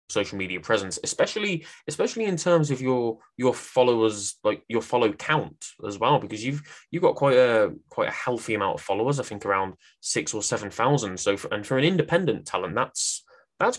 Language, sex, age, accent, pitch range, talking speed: English, male, 20-39, British, 100-135 Hz, 195 wpm